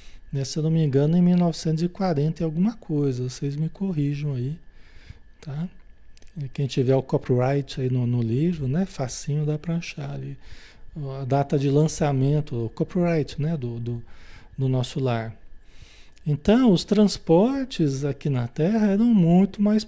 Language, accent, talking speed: Portuguese, Brazilian, 150 wpm